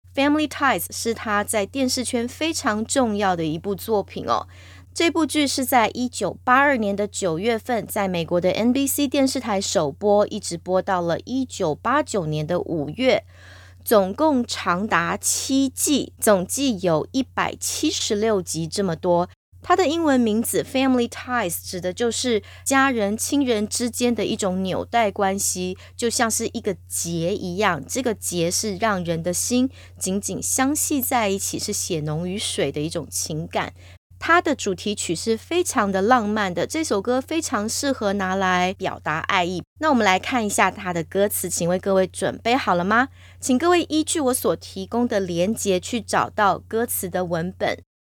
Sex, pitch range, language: female, 180-250 Hz, English